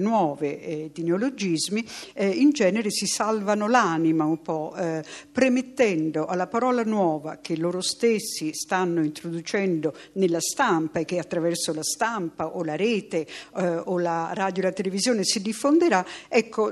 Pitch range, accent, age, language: 165-220 Hz, native, 60-79, Italian